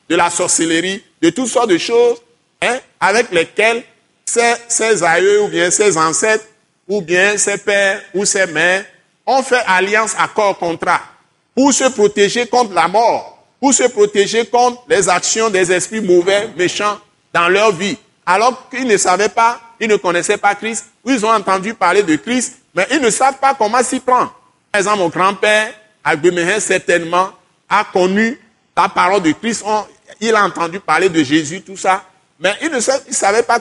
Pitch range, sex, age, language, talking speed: 190-255 Hz, male, 50-69, French, 180 wpm